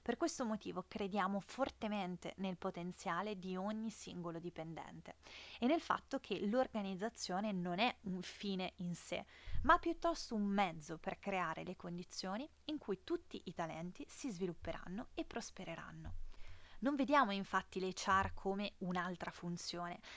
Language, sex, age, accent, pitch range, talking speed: Italian, female, 20-39, native, 180-230 Hz, 140 wpm